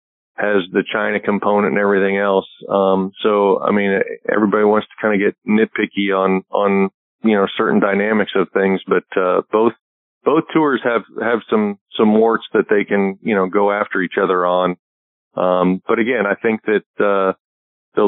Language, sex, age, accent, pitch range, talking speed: English, male, 40-59, American, 100-115 Hz, 180 wpm